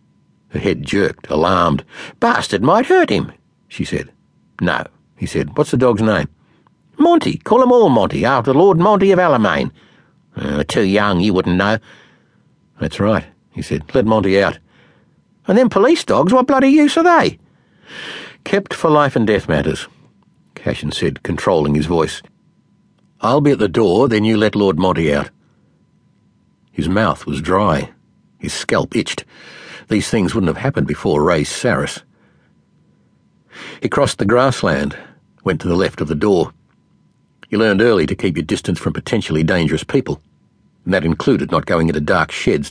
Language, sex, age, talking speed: English, male, 60-79, 165 wpm